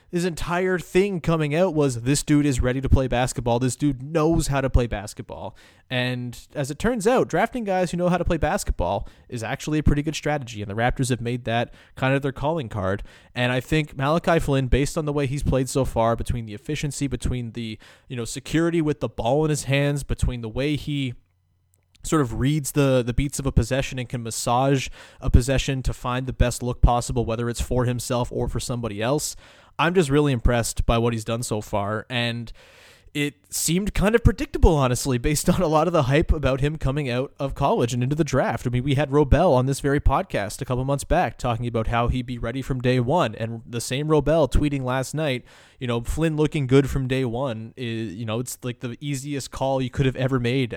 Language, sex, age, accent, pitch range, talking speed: English, male, 20-39, American, 120-145 Hz, 230 wpm